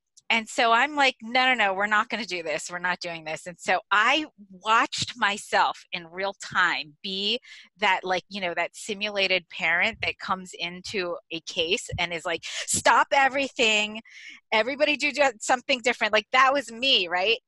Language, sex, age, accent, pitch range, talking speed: English, female, 30-49, American, 185-265 Hz, 180 wpm